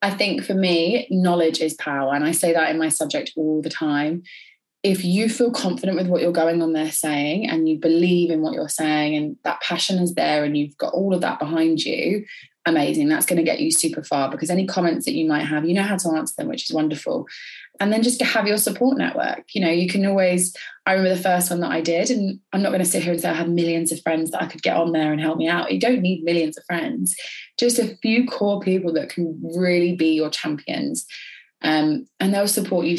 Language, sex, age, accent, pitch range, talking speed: English, female, 20-39, British, 160-200 Hz, 255 wpm